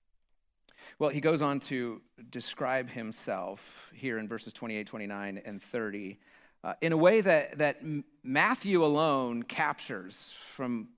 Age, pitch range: 40-59, 130-170 Hz